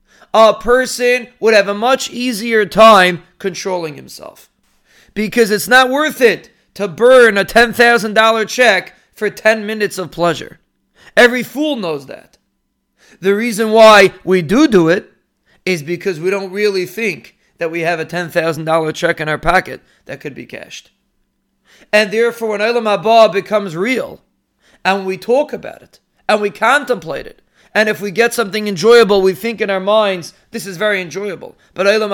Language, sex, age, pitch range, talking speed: English, male, 30-49, 185-230 Hz, 165 wpm